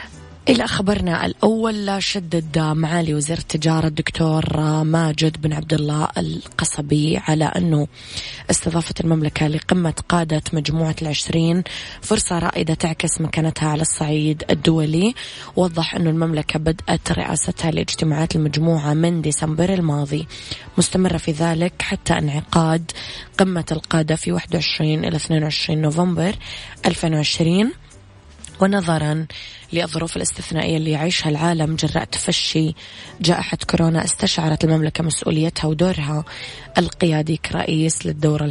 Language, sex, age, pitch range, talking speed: Arabic, female, 20-39, 155-170 Hz, 110 wpm